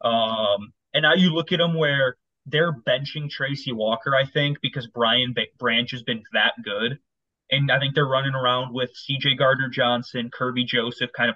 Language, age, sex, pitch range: English, 20-39, male, 125-145 Hz